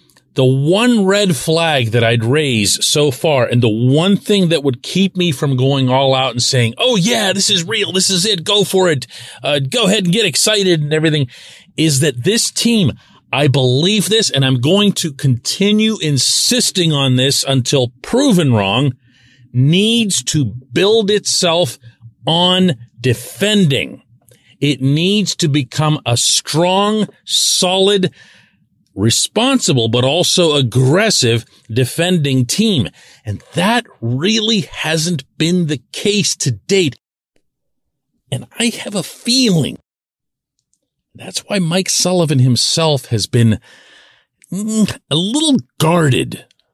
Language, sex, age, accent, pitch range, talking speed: English, male, 40-59, American, 120-190 Hz, 130 wpm